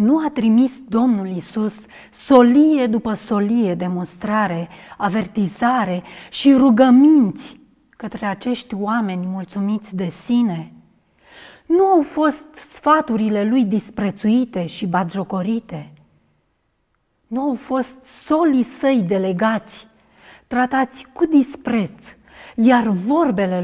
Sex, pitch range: female, 195-265 Hz